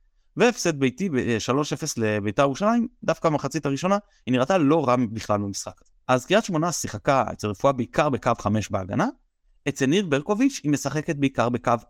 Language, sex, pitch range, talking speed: Hebrew, male, 110-155 Hz, 160 wpm